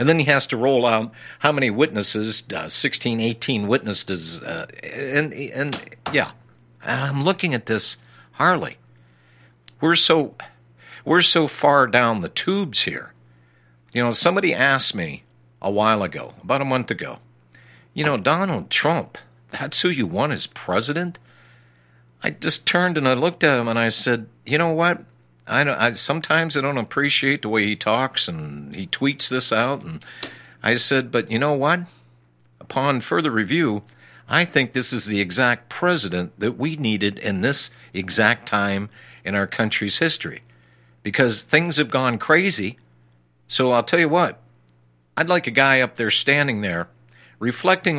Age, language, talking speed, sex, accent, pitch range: 60-79, English, 165 wpm, male, American, 90-140 Hz